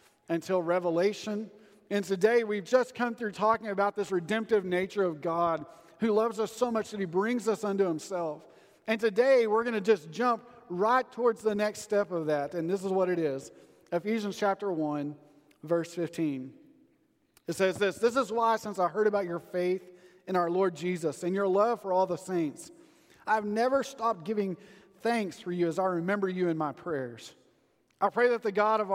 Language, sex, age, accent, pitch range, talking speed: English, male, 40-59, American, 165-215 Hz, 195 wpm